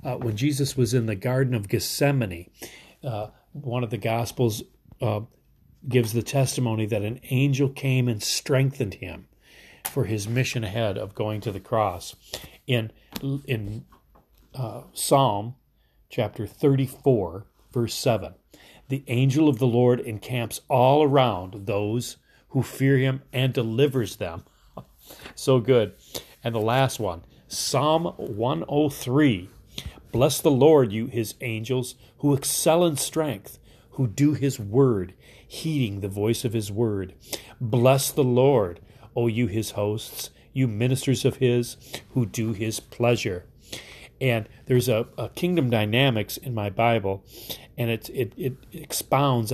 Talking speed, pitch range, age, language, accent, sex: 145 wpm, 110-135 Hz, 40-59, English, American, male